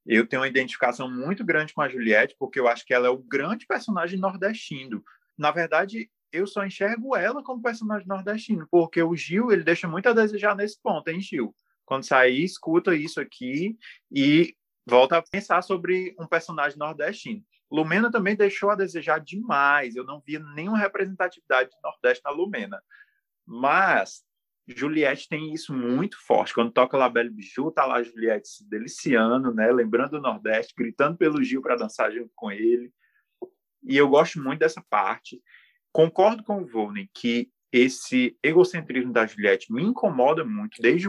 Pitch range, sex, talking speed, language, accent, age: 135-210 Hz, male, 170 wpm, Portuguese, Brazilian, 20-39